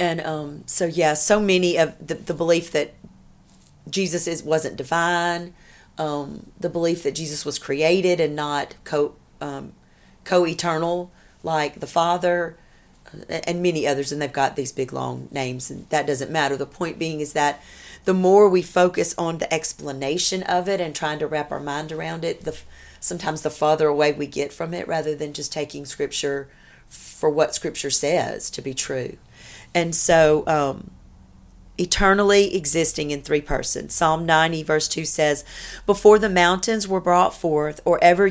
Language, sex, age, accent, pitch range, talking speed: English, female, 40-59, American, 145-175 Hz, 170 wpm